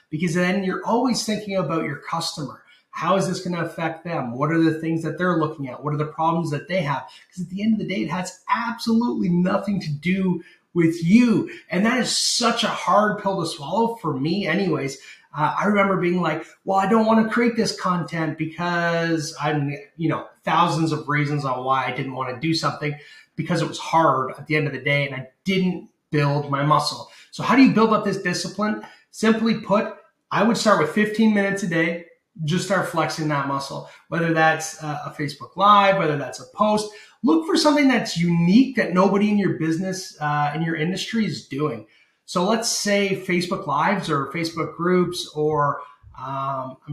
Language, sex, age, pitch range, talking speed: English, male, 30-49, 155-205 Hz, 205 wpm